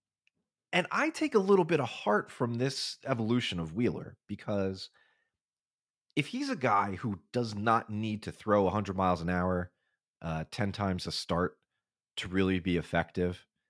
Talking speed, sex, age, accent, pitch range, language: 160 wpm, male, 30-49, American, 95-140 Hz, English